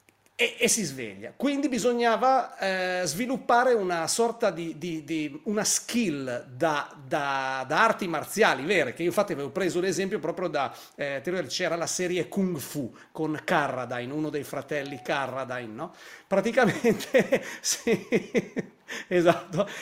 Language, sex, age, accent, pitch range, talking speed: Italian, male, 40-59, native, 165-230 Hz, 130 wpm